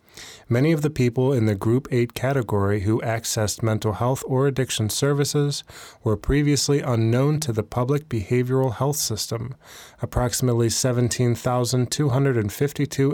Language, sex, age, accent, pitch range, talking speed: English, male, 30-49, American, 115-135 Hz, 125 wpm